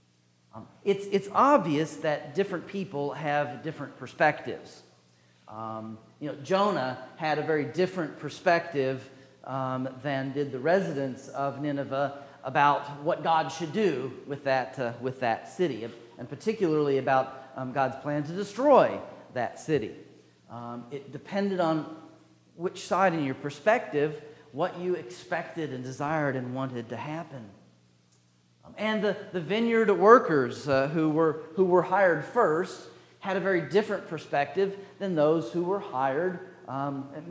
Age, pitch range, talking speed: 40-59, 125-170 Hz, 145 wpm